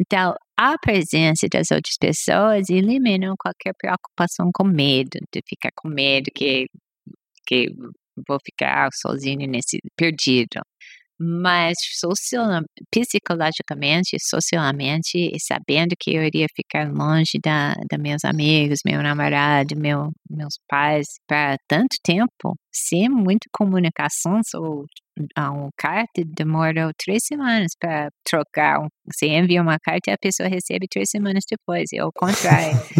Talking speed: 130 wpm